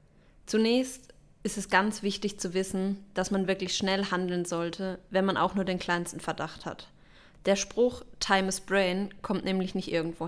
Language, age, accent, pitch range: German, 20-39, German, 180-205 Hz